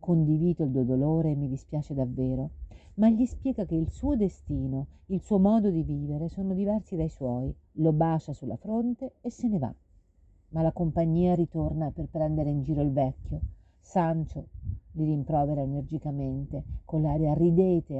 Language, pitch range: Italian, 130-175 Hz